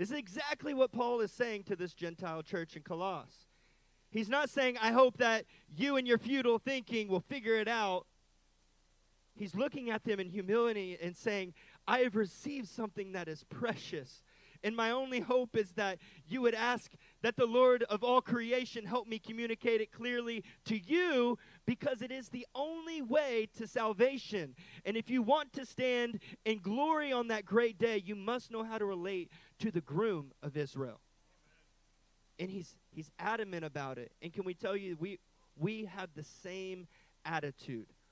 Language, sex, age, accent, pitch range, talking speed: English, male, 30-49, American, 150-230 Hz, 180 wpm